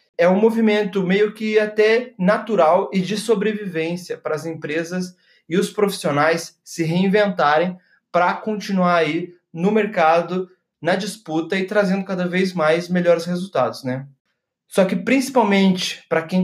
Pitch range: 165-200 Hz